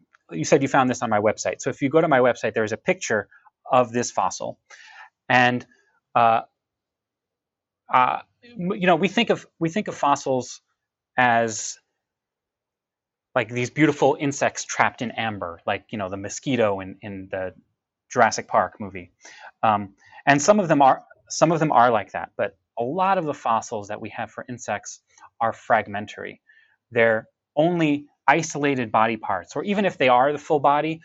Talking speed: 175 wpm